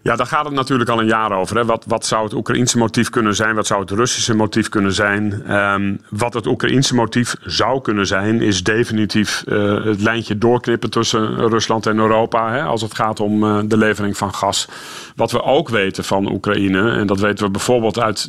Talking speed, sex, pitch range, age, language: 215 wpm, male, 105-115 Hz, 40-59, Dutch